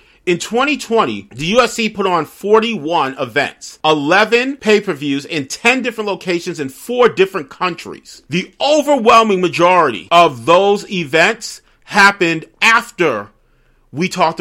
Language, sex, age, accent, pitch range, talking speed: English, male, 40-59, American, 160-215 Hz, 115 wpm